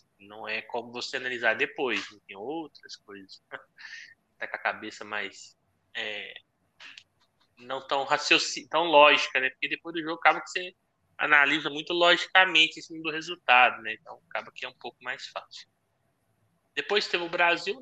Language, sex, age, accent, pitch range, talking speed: Portuguese, male, 20-39, Brazilian, 125-160 Hz, 165 wpm